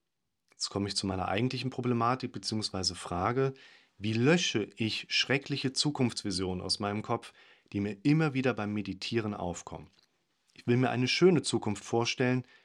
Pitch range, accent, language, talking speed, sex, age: 100-125 Hz, German, German, 145 wpm, male, 40-59